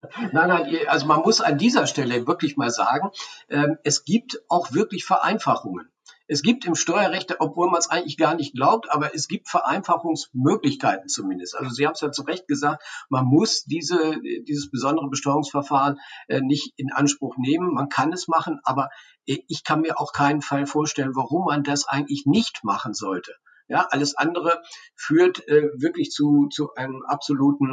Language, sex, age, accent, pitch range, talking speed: German, male, 50-69, German, 135-155 Hz, 170 wpm